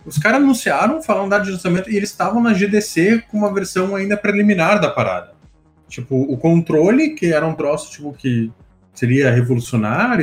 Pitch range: 125-190 Hz